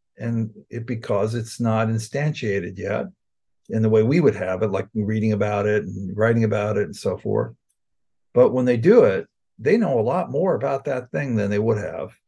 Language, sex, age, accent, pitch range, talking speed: English, male, 50-69, American, 100-115 Hz, 205 wpm